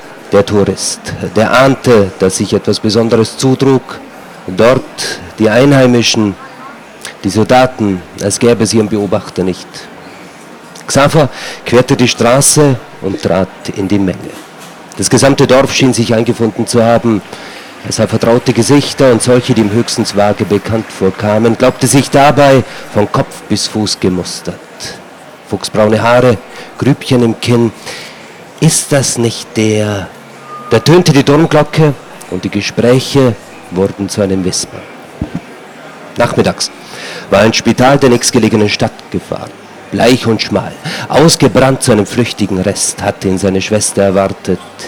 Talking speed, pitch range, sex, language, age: 130 wpm, 100-125 Hz, male, German, 40-59